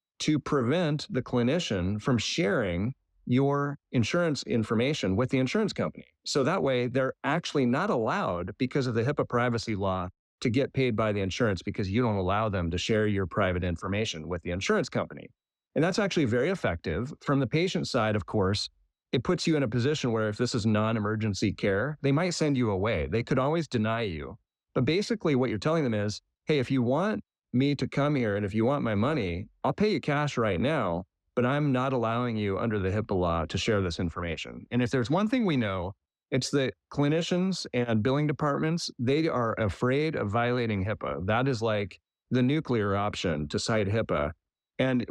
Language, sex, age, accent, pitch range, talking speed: English, male, 30-49, American, 100-140 Hz, 195 wpm